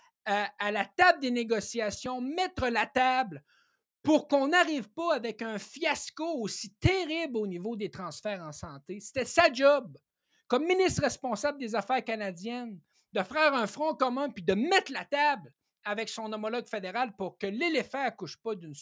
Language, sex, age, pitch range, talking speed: French, male, 60-79, 205-280 Hz, 170 wpm